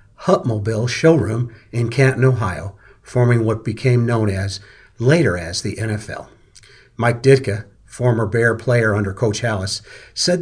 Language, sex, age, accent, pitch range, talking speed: English, male, 50-69, American, 110-155 Hz, 130 wpm